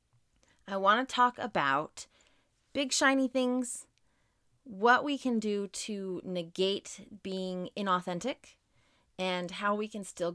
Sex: female